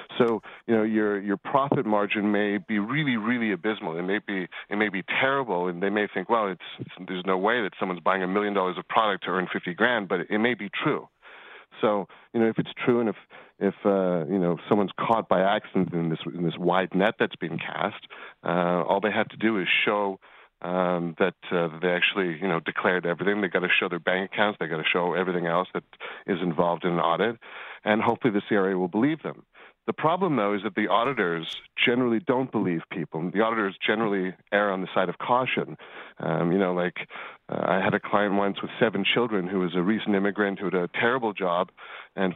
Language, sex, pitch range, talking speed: English, male, 90-105 Hz, 225 wpm